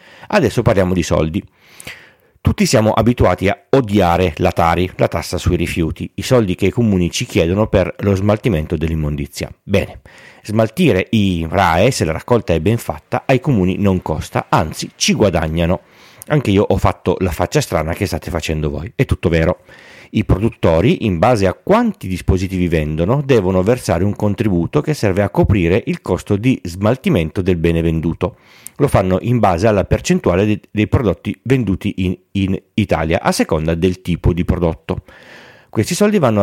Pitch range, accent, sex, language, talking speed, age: 90-115 Hz, native, male, Italian, 165 wpm, 40-59